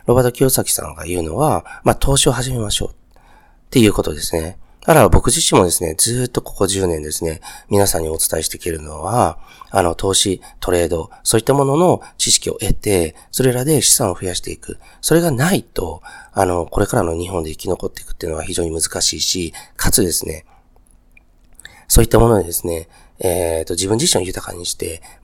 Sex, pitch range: male, 85-125 Hz